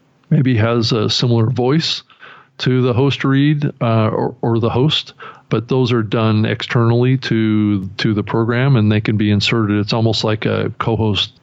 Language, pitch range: English, 105-130 Hz